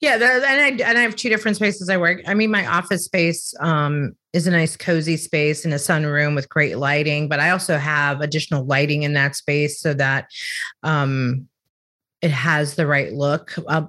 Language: English